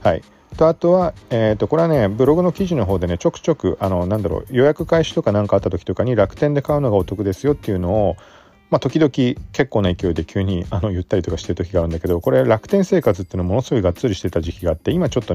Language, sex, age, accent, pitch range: Japanese, male, 40-59, native, 90-130 Hz